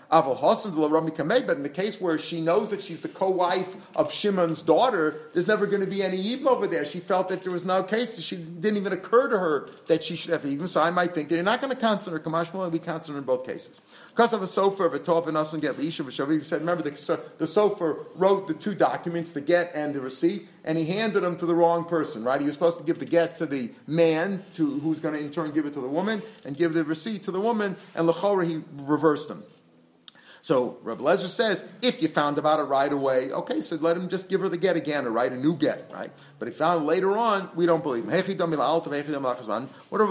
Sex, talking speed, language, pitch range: male, 230 wpm, English, 155-190 Hz